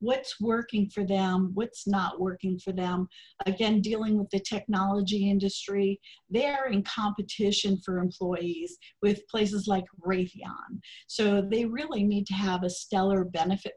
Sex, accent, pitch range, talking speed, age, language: female, American, 185-210 Hz, 145 wpm, 50-69, English